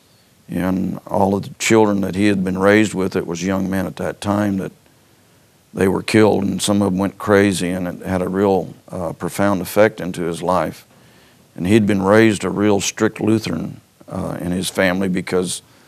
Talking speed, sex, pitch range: 195 wpm, male, 95-105 Hz